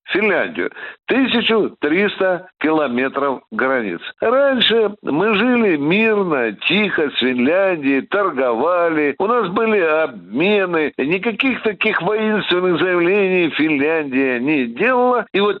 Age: 60-79